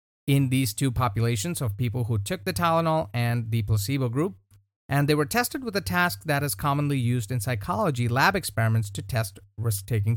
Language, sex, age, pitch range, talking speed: English, male, 30-49, 110-155 Hz, 190 wpm